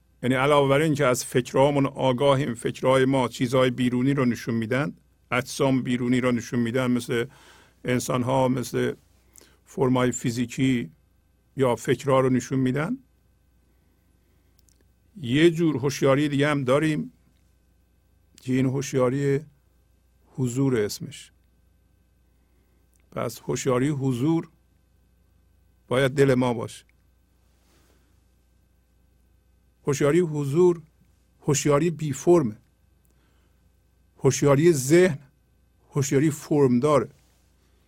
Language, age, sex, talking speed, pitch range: Persian, 50-69, male, 90 wpm, 85-140 Hz